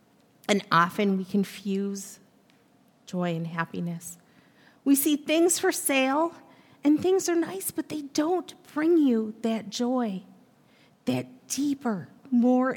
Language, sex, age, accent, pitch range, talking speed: English, female, 40-59, American, 225-305 Hz, 120 wpm